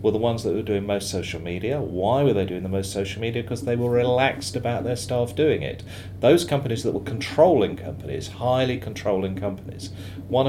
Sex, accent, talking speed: male, British, 205 wpm